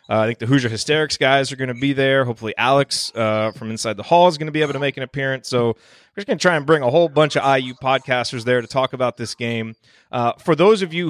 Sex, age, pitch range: male, 30-49, 110-150 Hz